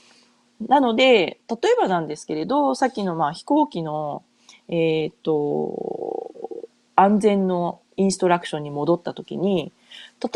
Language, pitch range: Japanese, 165-235 Hz